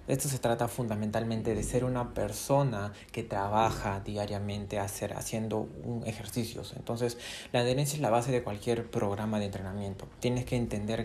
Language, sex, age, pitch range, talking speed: Spanish, male, 20-39, 105-120 Hz, 160 wpm